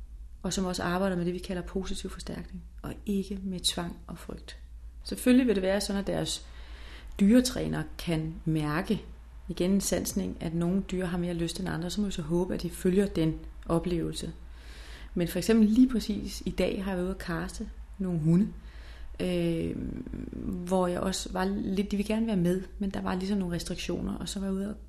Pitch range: 165-200 Hz